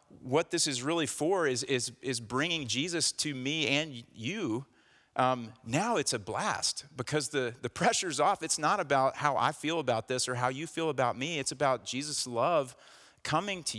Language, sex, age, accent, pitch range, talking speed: English, male, 40-59, American, 115-145 Hz, 190 wpm